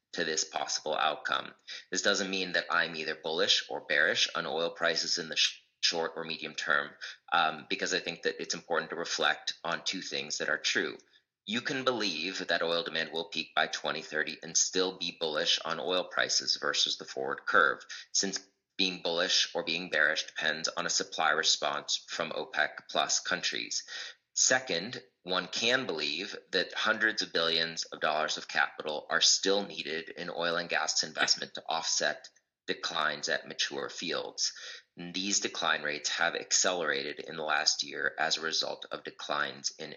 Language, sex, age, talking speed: English, male, 30-49, 170 wpm